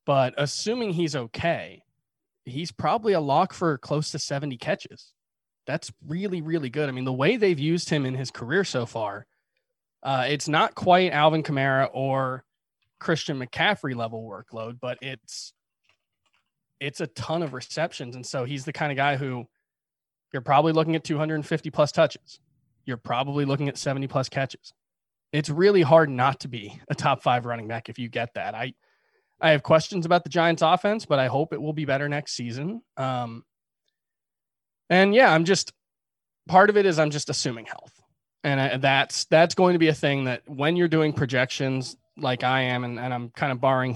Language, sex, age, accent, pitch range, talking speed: English, male, 20-39, American, 125-160 Hz, 185 wpm